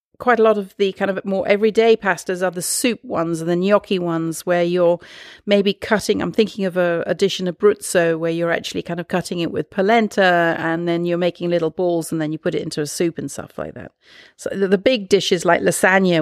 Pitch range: 165-195 Hz